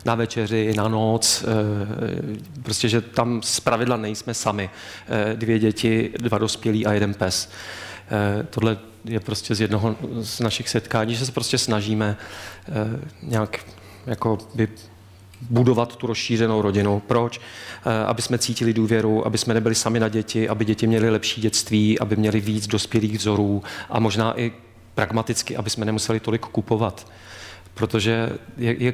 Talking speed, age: 140 wpm, 40-59